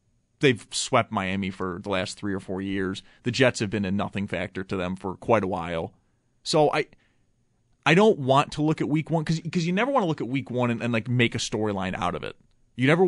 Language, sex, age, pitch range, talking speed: English, male, 30-49, 115-150 Hz, 245 wpm